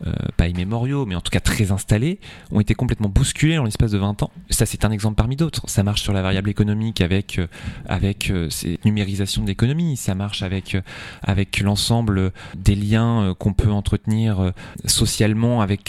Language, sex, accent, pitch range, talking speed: French, male, French, 100-115 Hz, 195 wpm